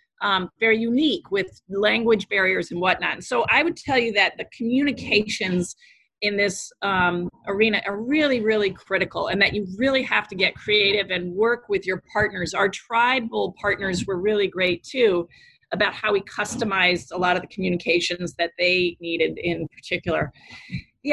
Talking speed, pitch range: 170 wpm, 185-230 Hz